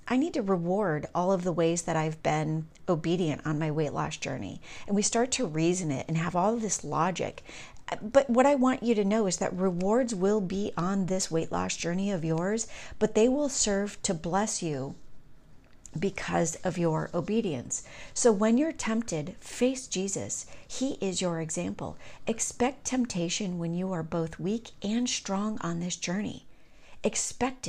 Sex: female